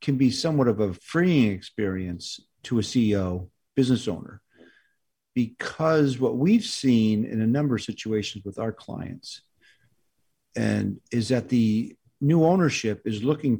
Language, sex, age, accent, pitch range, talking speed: English, male, 50-69, American, 110-140 Hz, 140 wpm